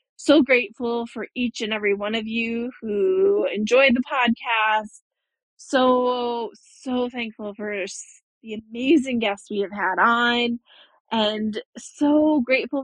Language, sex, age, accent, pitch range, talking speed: English, female, 20-39, American, 210-260 Hz, 125 wpm